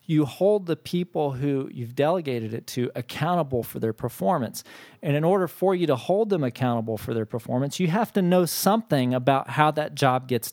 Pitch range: 120-155 Hz